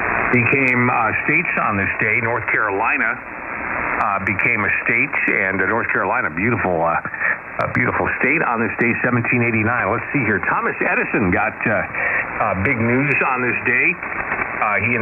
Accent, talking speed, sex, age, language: American, 150 wpm, male, 60-79, English